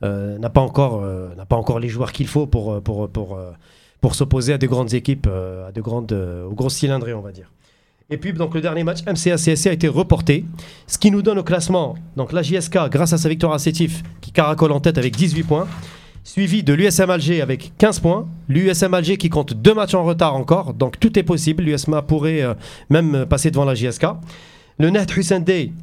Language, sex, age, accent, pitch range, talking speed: French, male, 30-49, French, 130-170 Hz, 225 wpm